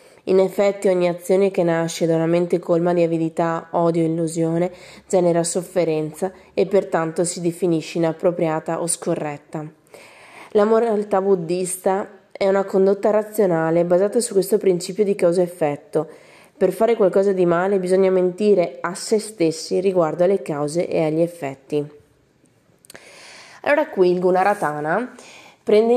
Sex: female